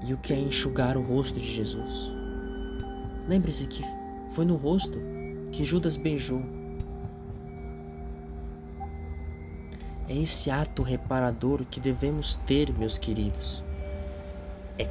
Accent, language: Brazilian, Portuguese